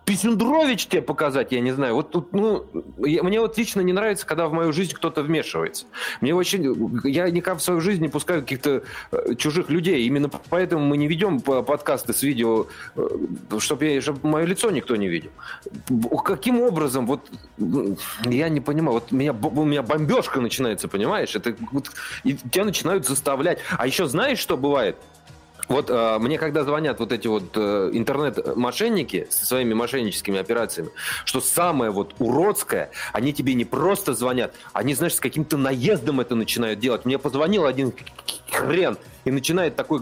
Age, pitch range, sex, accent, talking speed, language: 30-49, 130-180 Hz, male, native, 170 wpm, Russian